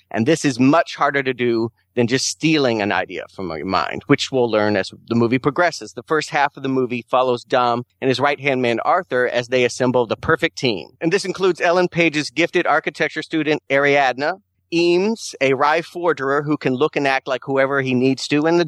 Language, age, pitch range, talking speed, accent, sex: English, 40-59, 120-155 Hz, 210 wpm, American, male